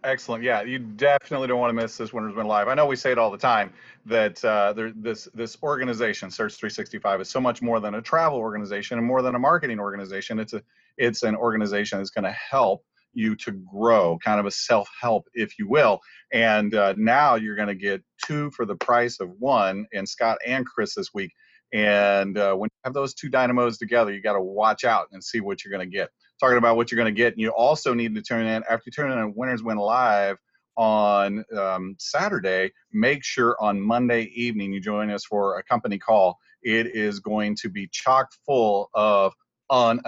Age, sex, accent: 40-59, male, American